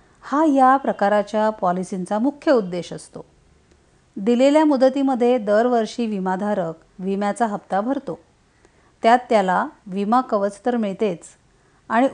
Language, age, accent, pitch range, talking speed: Marathi, 50-69, native, 190-260 Hz, 105 wpm